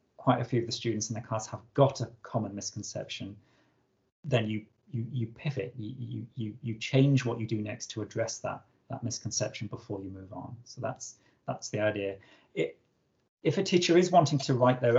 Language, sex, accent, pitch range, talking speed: English, male, British, 110-130 Hz, 200 wpm